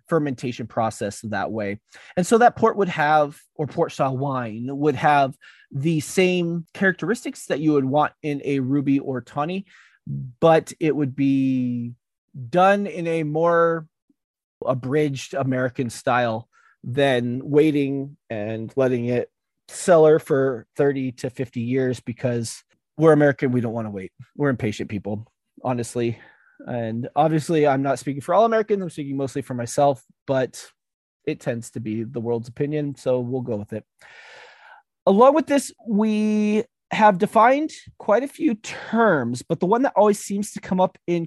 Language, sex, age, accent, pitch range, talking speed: English, male, 30-49, American, 125-175 Hz, 155 wpm